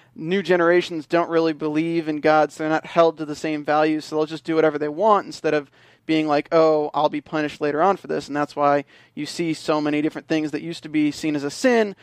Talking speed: 255 wpm